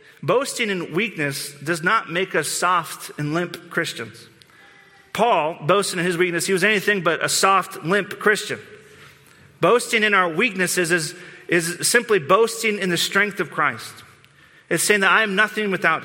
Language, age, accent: English, 40-59, American